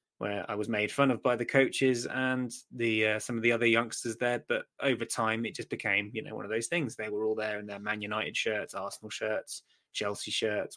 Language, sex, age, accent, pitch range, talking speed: English, male, 20-39, British, 110-130 Hz, 240 wpm